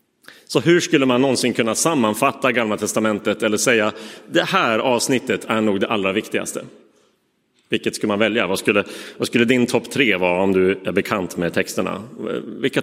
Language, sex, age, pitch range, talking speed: Swedish, male, 30-49, 105-130 Hz, 180 wpm